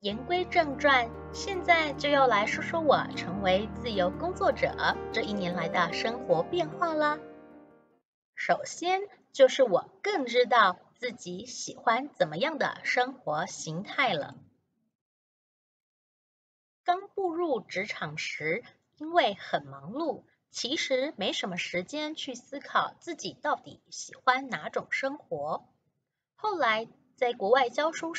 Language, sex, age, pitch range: Chinese, female, 30-49, 200-315 Hz